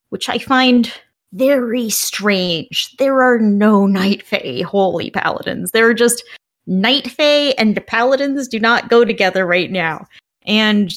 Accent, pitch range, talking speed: American, 200-270 Hz, 150 wpm